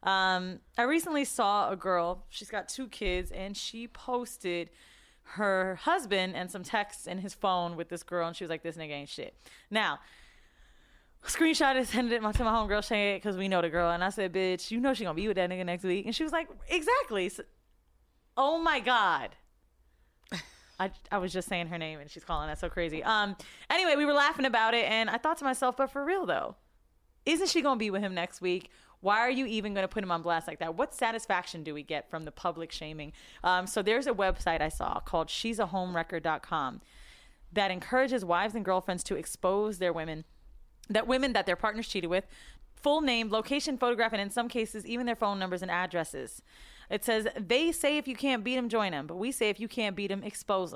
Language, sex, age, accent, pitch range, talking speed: English, female, 20-39, American, 175-235 Hz, 225 wpm